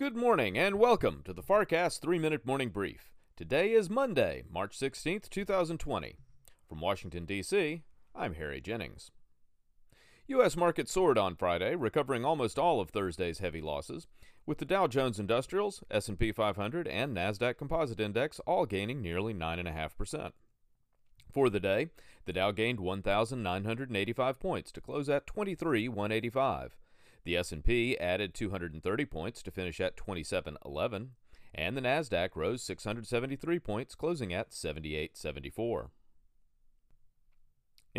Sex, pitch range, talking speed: male, 95-155 Hz, 125 wpm